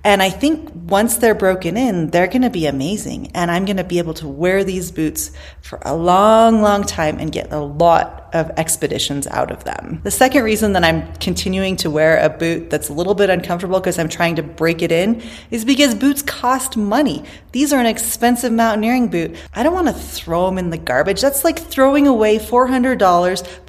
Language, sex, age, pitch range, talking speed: English, female, 30-49, 165-220 Hz, 205 wpm